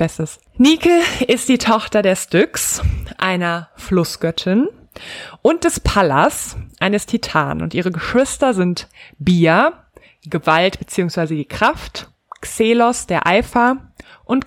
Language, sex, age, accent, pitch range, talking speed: German, female, 20-39, German, 170-210 Hz, 110 wpm